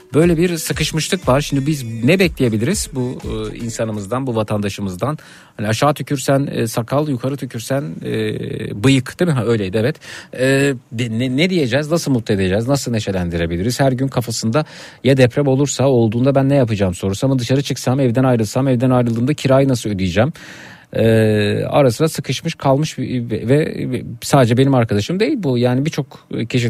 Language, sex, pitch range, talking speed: Turkish, male, 120-155 Hz, 150 wpm